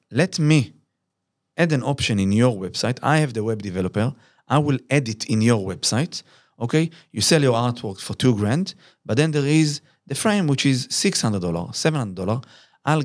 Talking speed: 175 wpm